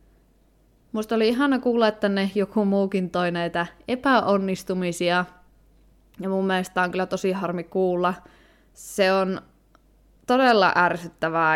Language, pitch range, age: Finnish, 170-210 Hz, 20-39